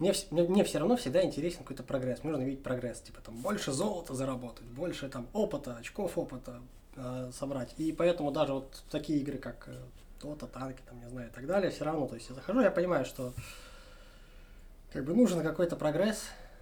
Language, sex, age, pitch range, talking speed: Russian, male, 20-39, 125-160 Hz, 190 wpm